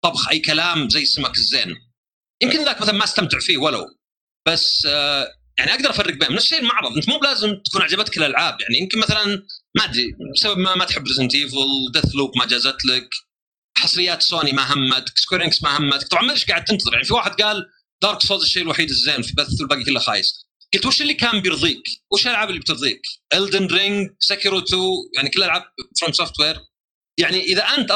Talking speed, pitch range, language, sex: 190 wpm, 145-225 Hz, Arabic, male